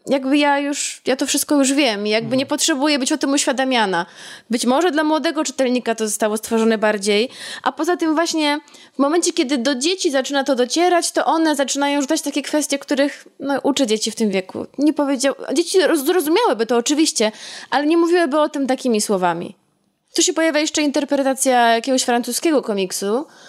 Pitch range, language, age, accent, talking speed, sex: 230-290 Hz, Polish, 20-39, native, 180 wpm, female